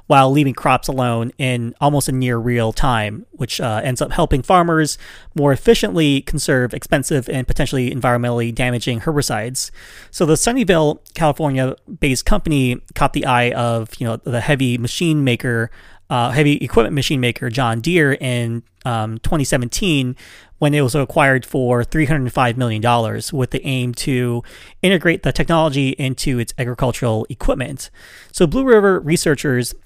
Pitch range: 120-150 Hz